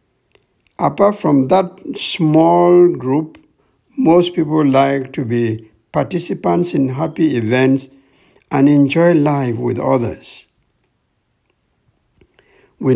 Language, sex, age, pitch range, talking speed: English, male, 60-79, 130-160 Hz, 95 wpm